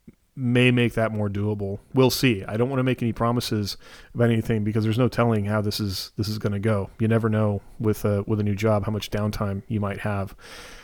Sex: male